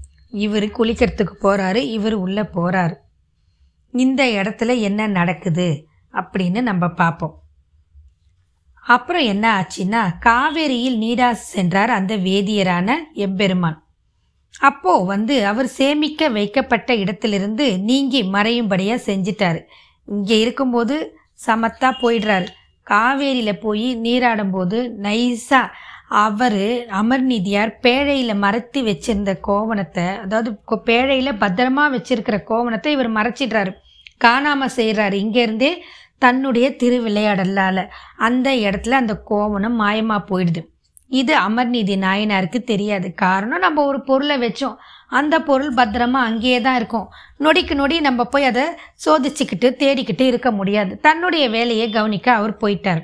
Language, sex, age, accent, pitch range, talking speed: Tamil, female, 20-39, native, 195-255 Hz, 105 wpm